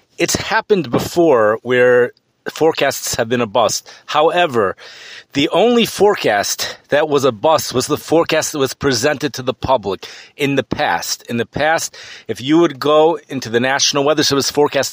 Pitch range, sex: 125-155 Hz, male